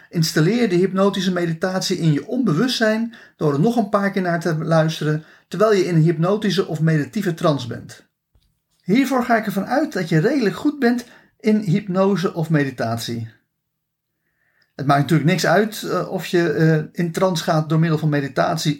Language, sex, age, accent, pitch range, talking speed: Dutch, male, 40-59, Dutch, 155-225 Hz, 170 wpm